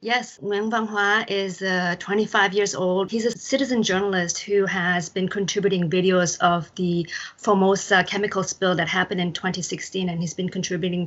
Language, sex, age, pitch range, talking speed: English, female, 30-49, 180-205 Hz, 165 wpm